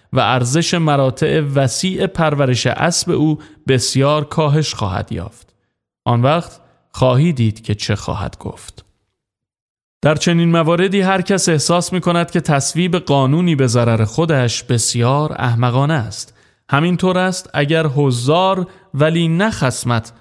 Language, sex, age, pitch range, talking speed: Persian, male, 30-49, 120-170 Hz, 125 wpm